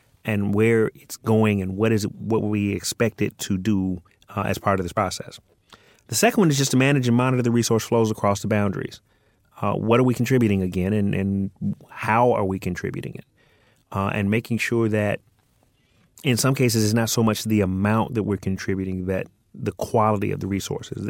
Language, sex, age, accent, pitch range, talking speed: English, male, 30-49, American, 100-115 Hz, 200 wpm